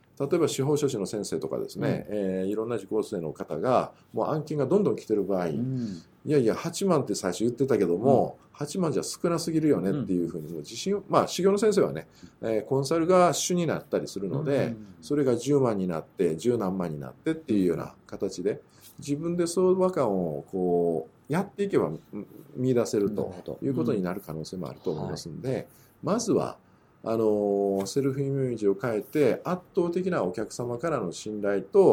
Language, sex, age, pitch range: Japanese, male, 50-69, 105-165 Hz